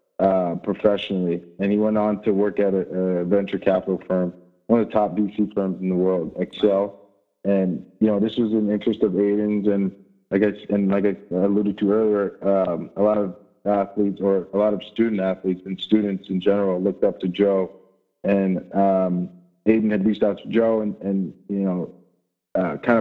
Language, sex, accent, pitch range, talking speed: English, male, American, 95-105 Hz, 200 wpm